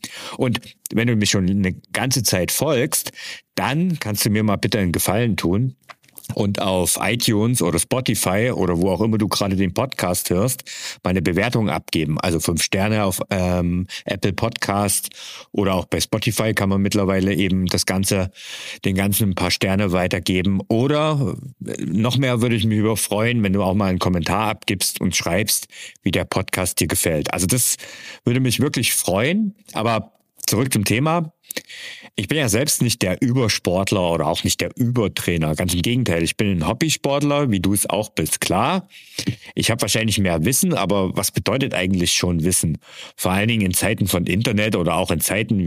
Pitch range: 95-120 Hz